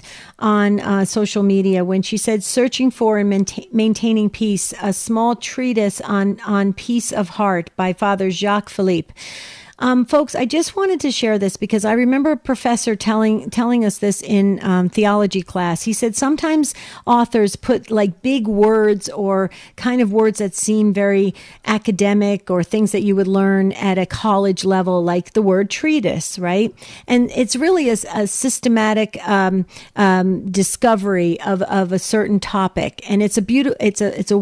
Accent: American